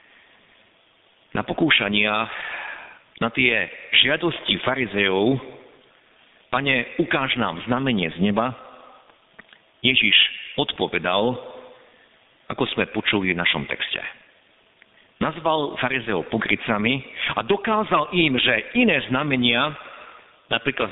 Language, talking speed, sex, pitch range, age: Slovak, 85 wpm, male, 110-145 Hz, 50-69